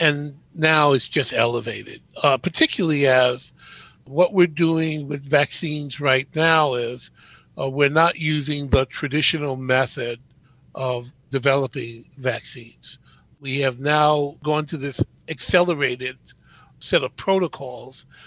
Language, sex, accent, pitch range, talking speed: English, male, American, 130-150 Hz, 120 wpm